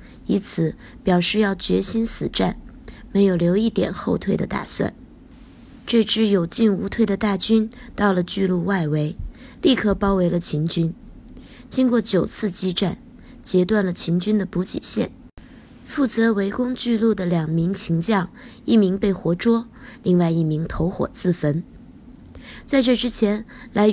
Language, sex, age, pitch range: Chinese, female, 20-39, 175-225 Hz